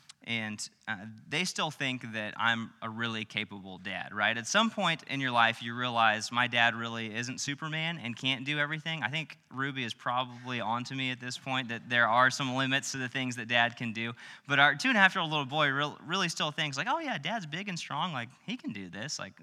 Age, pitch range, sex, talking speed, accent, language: 20-39, 110-140 Hz, male, 240 wpm, American, English